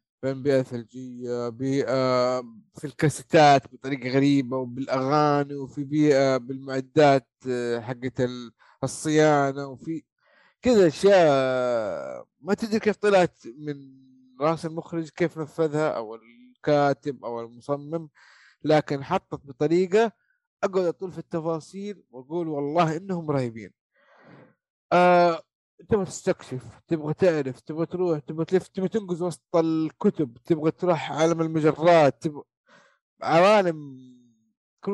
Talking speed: 100 wpm